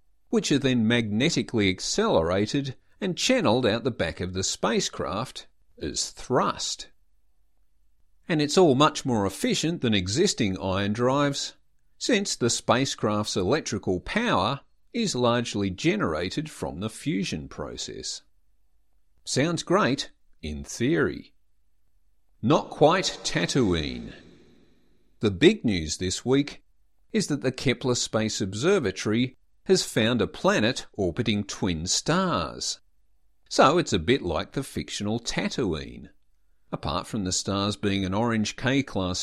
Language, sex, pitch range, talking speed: English, male, 95-130 Hz, 120 wpm